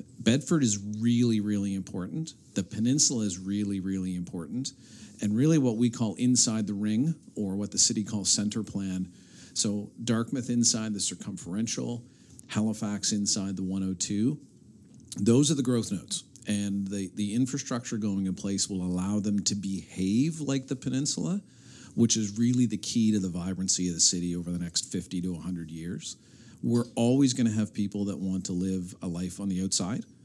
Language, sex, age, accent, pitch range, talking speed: English, male, 50-69, American, 95-120 Hz, 175 wpm